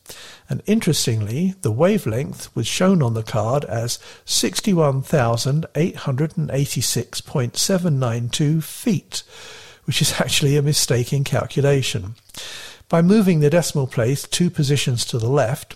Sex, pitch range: male, 125-160 Hz